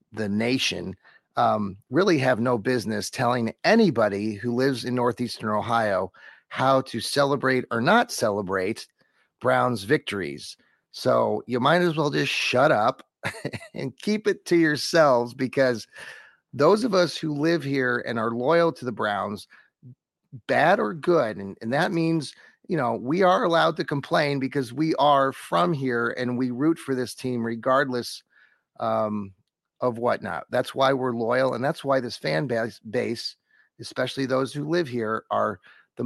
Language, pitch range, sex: English, 115-145 Hz, male